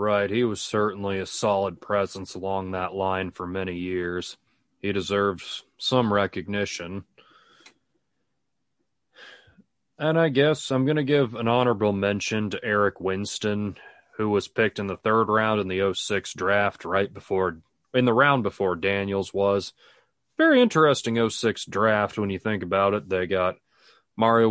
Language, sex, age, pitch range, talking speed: English, male, 30-49, 100-115 Hz, 150 wpm